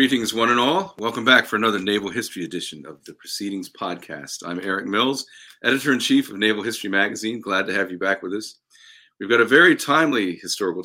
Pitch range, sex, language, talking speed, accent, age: 105-135 Hz, male, English, 200 wpm, American, 40-59